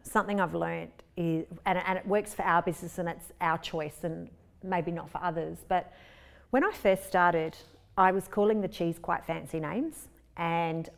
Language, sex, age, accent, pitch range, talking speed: English, female, 30-49, Australian, 170-205 Hz, 180 wpm